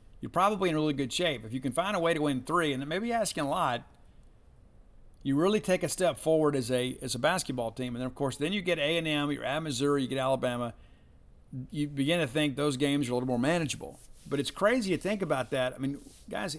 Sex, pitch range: male, 130-170 Hz